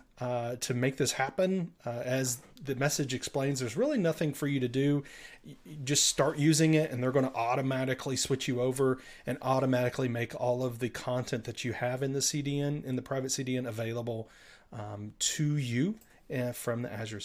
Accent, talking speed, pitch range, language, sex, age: American, 185 wpm, 125-145 Hz, English, male, 30-49